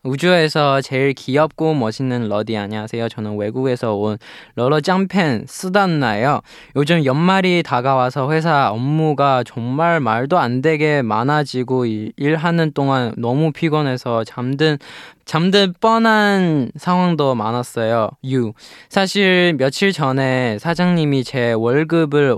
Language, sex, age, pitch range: Korean, male, 20-39, 115-155 Hz